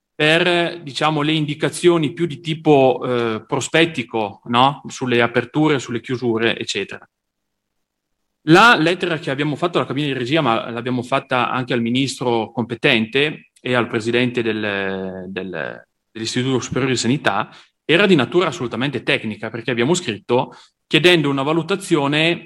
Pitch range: 125-160 Hz